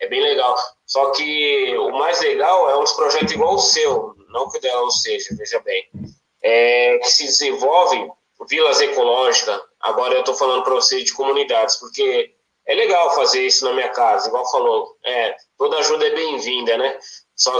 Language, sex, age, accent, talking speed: Portuguese, male, 20-39, Brazilian, 180 wpm